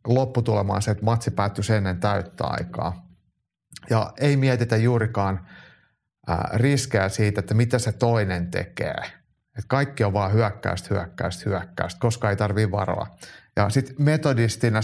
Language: Finnish